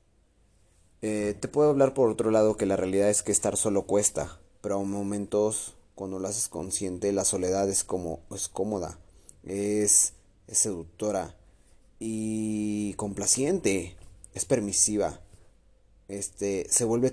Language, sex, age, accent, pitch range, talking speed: Spanish, male, 30-49, Mexican, 95-110 Hz, 135 wpm